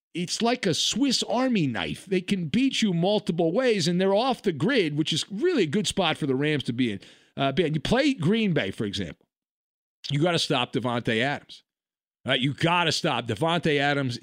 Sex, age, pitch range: male, 40-59, 160-225 Hz